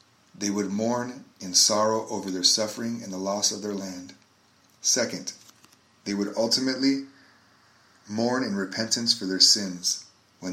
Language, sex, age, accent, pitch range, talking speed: English, male, 40-59, American, 95-115 Hz, 140 wpm